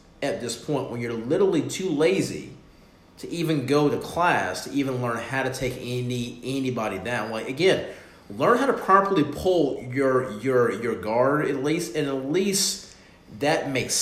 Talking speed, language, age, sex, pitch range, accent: 170 wpm, English, 40-59, male, 120-150 Hz, American